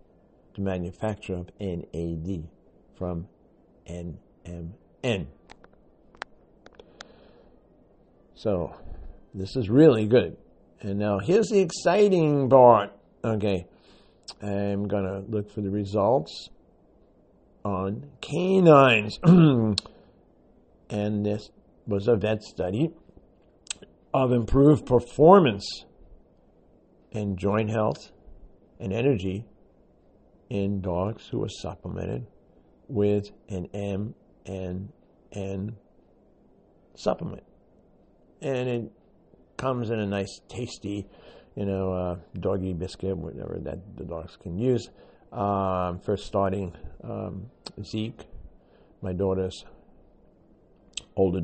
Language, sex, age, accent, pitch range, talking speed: English, male, 50-69, American, 90-110 Hz, 85 wpm